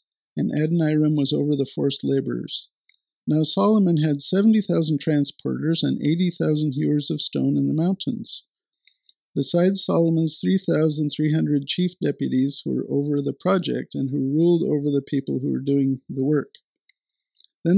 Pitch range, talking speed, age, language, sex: 135-170 Hz, 160 wpm, 50-69, English, male